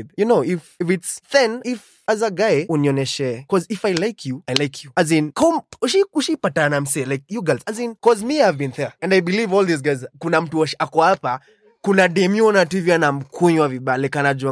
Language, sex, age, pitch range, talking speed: Swahili, male, 20-39, 135-195 Hz, 185 wpm